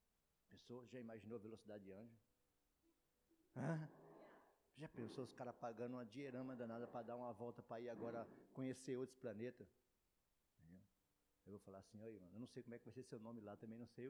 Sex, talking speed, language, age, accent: male, 195 wpm, Portuguese, 60-79, Brazilian